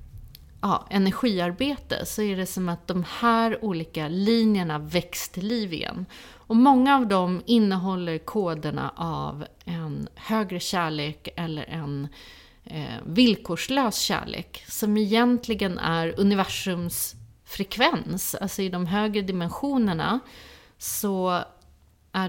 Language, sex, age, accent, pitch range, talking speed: Swedish, female, 30-49, native, 160-210 Hz, 115 wpm